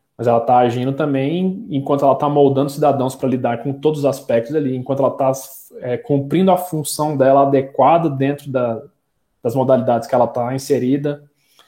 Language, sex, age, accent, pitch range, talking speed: Portuguese, male, 20-39, Brazilian, 125-155 Hz, 175 wpm